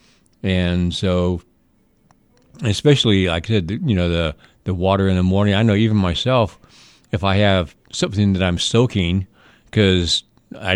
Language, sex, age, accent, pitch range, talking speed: English, male, 50-69, American, 90-105 Hz, 150 wpm